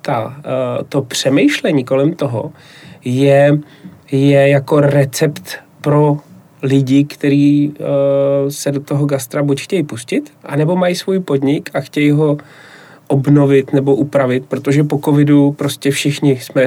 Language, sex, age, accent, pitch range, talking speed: Czech, male, 30-49, native, 135-150 Hz, 120 wpm